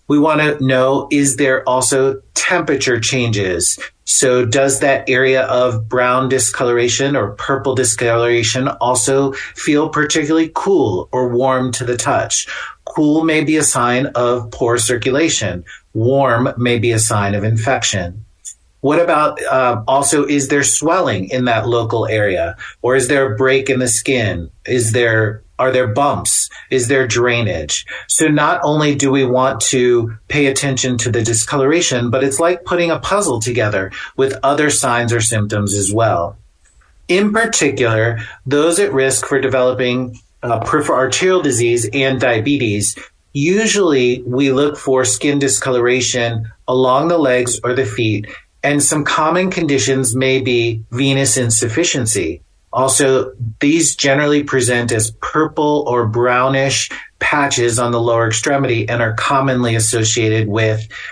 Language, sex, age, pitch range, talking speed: English, male, 40-59, 115-140 Hz, 145 wpm